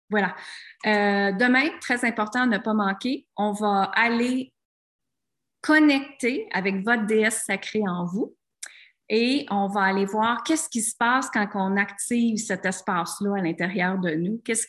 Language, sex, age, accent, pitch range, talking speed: French, female, 30-49, Canadian, 190-245 Hz, 150 wpm